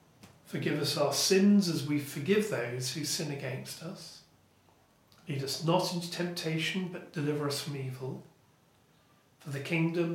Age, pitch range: 40-59, 140-175 Hz